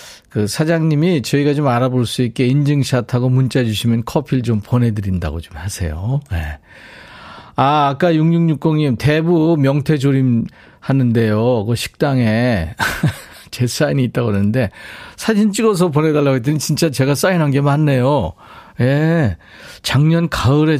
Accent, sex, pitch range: native, male, 115-160 Hz